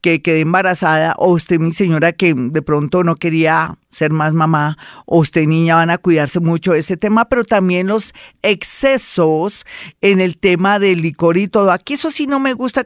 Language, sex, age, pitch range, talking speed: Spanish, female, 40-59, 165-200 Hz, 195 wpm